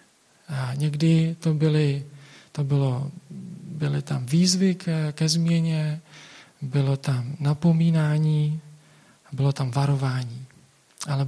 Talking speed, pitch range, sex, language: 100 wpm, 140-160 Hz, male, Czech